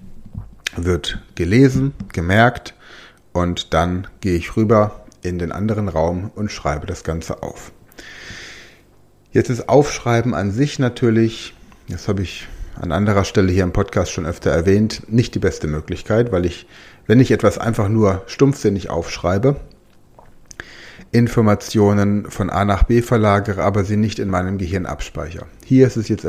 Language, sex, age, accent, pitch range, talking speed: German, male, 30-49, German, 95-115 Hz, 150 wpm